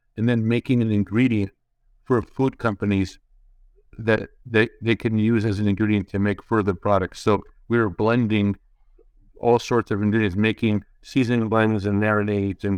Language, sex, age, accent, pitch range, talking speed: English, male, 50-69, American, 100-115 Hz, 160 wpm